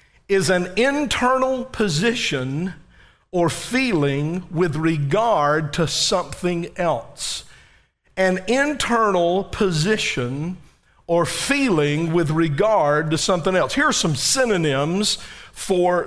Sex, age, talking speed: male, 50-69, 95 wpm